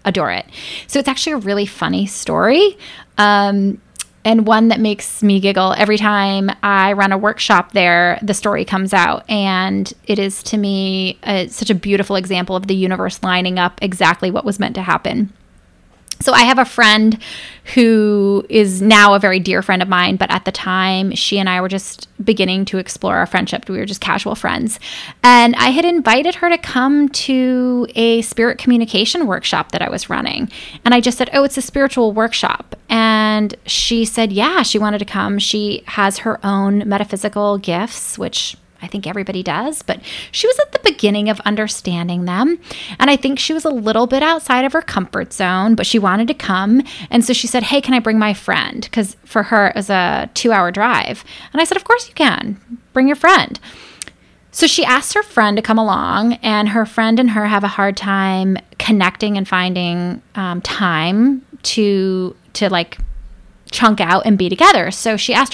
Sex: female